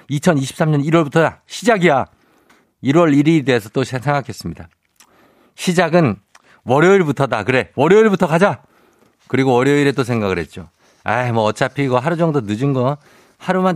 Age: 50-69